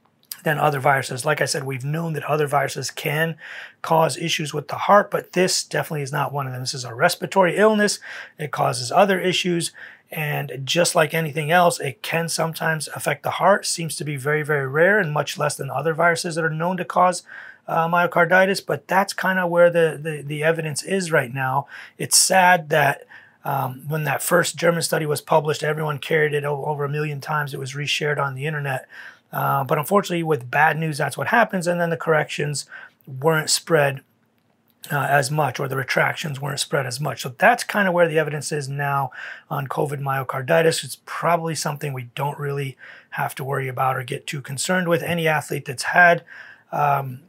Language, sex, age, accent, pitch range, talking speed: English, male, 30-49, American, 140-165 Hz, 200 wpm